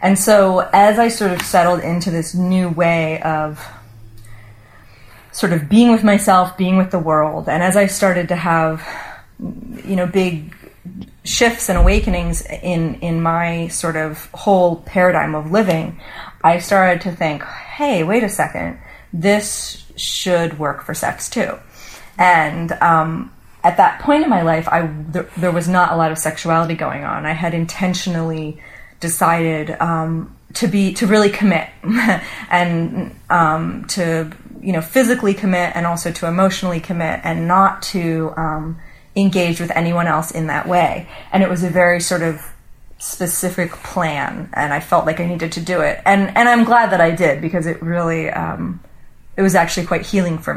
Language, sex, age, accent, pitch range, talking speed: English, female, 30-49, American, 160-190 Hz, 170 wpm